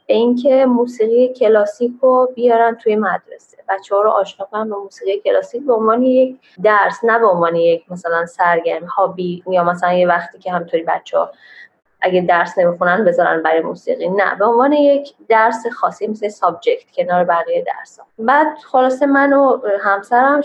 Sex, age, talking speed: female, 20-39, 160 wpm